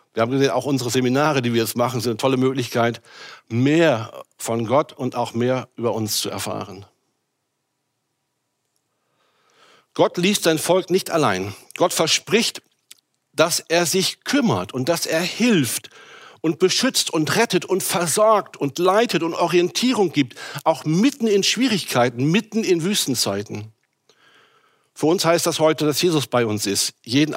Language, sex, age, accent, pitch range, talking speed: German, male, 60-79, German, 120-165 Hz, 150 wpm